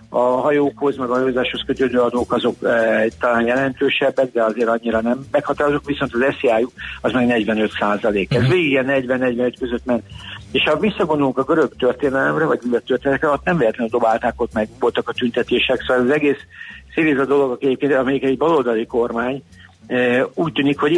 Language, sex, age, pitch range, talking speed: Hungarian, male, 60-79, 115-140 Hz, 170 wpm